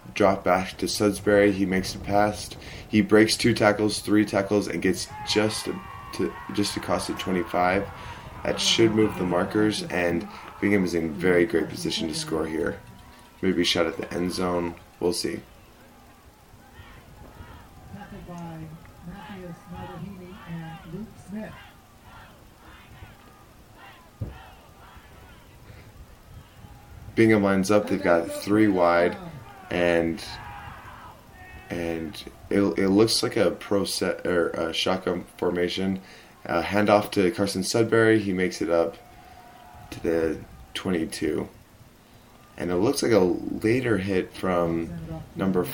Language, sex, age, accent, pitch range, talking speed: English, male, 20-39, American, 90-110 Hz, 115 wpm